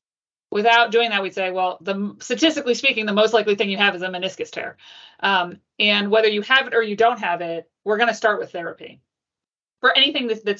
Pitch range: 175-220 Hz